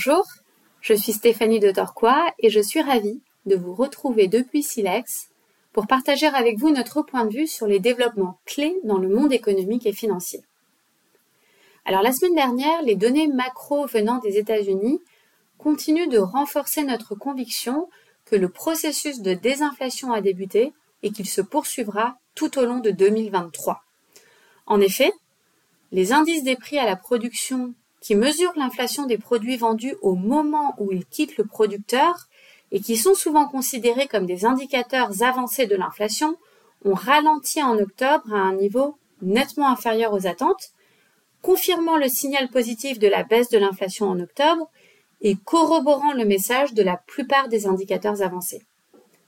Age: 30-49